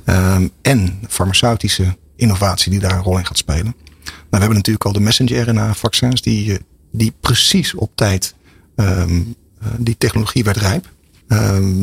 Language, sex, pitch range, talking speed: Dutch, male, 90-115 Hz, 155 wpm